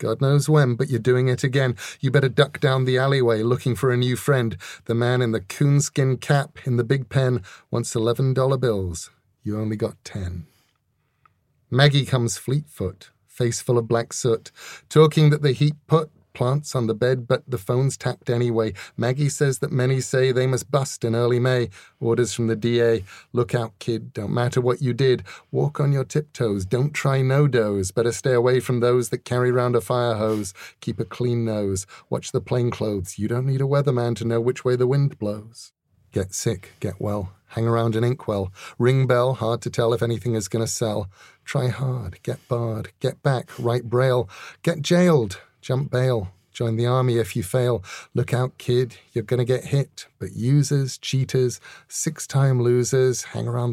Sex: male